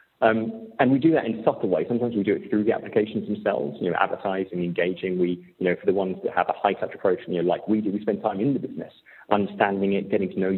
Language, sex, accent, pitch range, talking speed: English, male, British, 95-115 Hz, 270 wpm